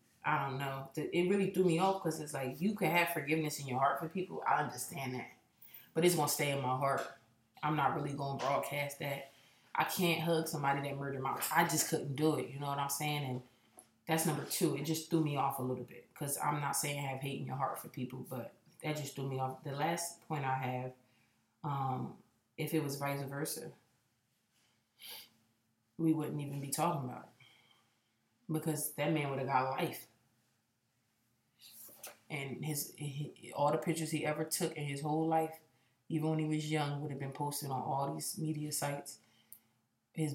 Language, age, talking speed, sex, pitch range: English, 20-39, 205 wpm, female, 130-155 Hz